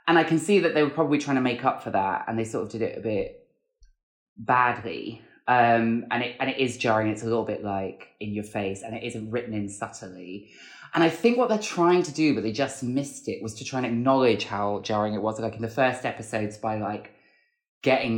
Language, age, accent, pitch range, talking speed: English, 20-39, British, 105-135 Hz, 245 wpm